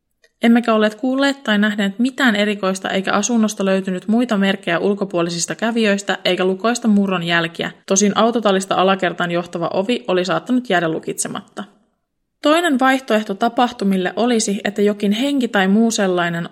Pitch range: 185-230 Hz